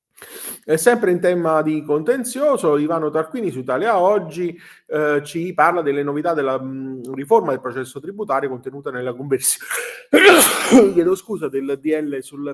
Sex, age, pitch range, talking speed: male, 30-49, 130-180 Hz, 145 wpm